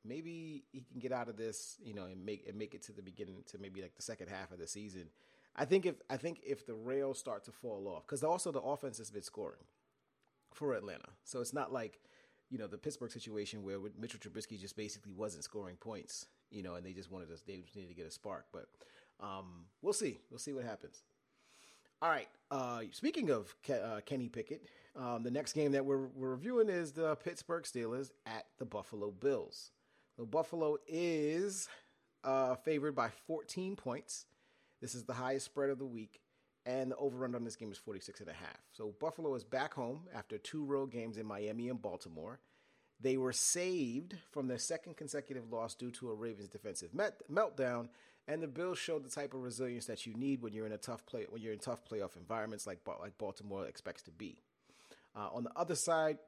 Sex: male